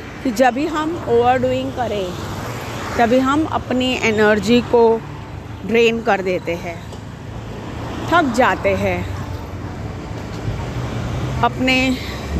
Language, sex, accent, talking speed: Hindi, female, native, 90 wpm